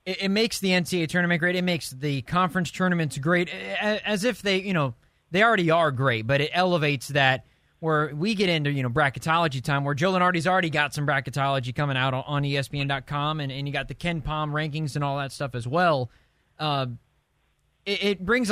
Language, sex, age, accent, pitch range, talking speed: English, male, 20-39, American, 140-180 Hz, 200 wpm